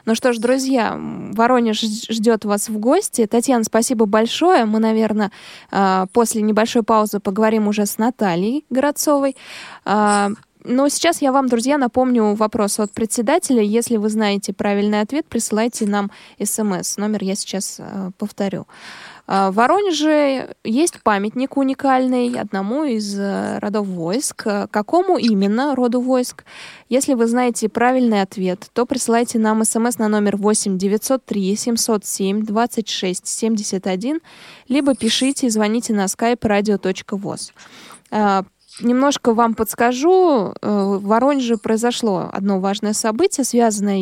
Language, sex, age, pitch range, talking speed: Russian, female, 20-39, 205-250 Hz, 115 wpm